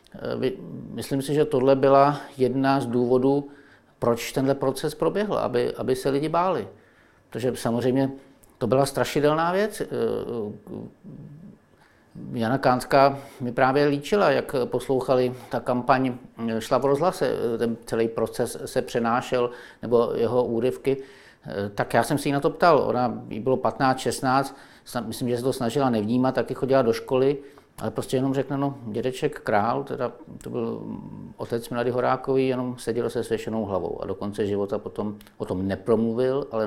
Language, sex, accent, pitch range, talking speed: Czech, male, native, 115-135 Hz, 145 wpm